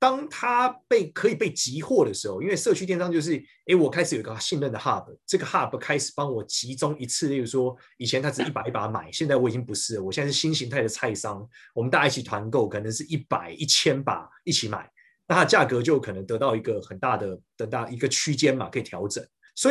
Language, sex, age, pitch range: Chinese, male, 30-49, 130-195 Hz